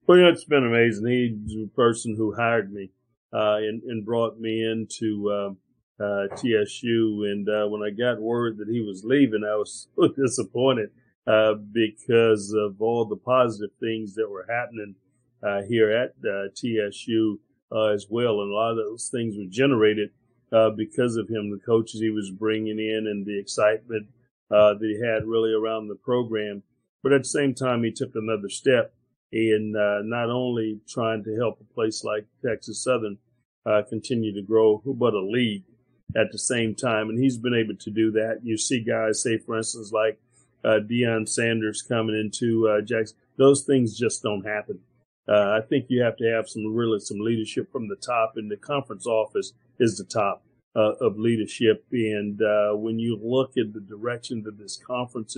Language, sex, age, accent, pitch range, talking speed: English, male, 50-69, American, 105-120 Hz, 190 wpm